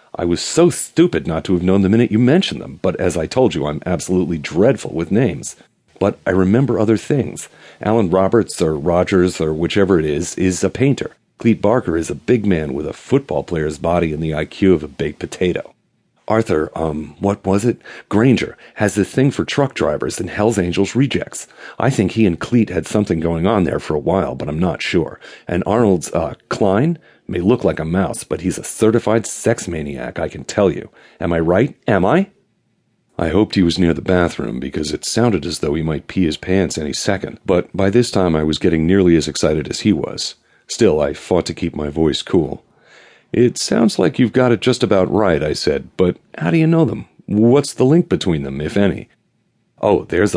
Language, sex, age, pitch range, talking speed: English, male, 40-59, 85-115 Hz, 215 wpm